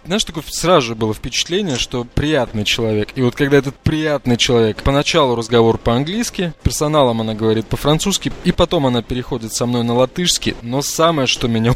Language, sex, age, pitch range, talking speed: Russian, male, 20-39, 115-150 Hz, 170 wpm